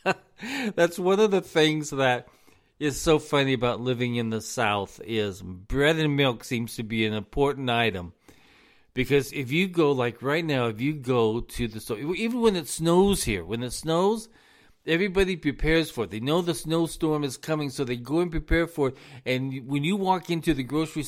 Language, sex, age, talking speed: English, male, 50-69, 195 wpm